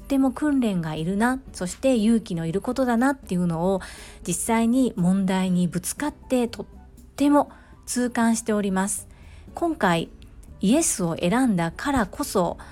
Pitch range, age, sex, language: 180-250 Hz, 40-59, female, Japanese